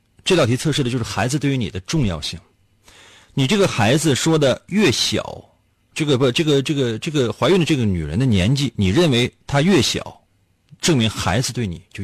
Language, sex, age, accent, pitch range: Chinese, male, 30-49, native, 95-140 Hz